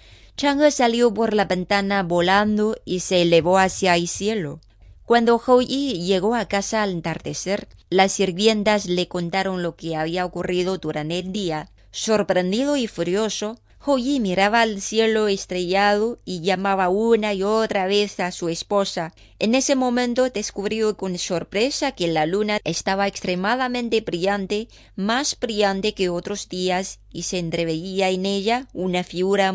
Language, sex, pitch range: Chinese, female, 175-220 Hz